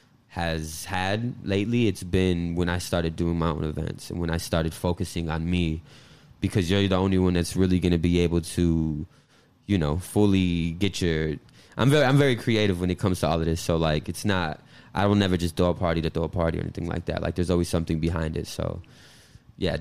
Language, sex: English, male